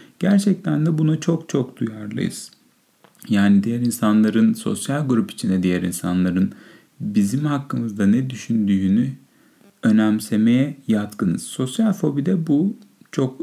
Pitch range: 105-145 Hz